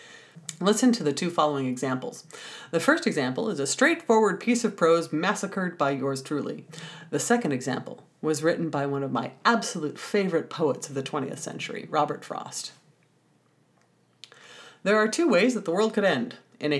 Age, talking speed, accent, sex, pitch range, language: 40-59, 170 wpm, American, female, 155-235 Hz, English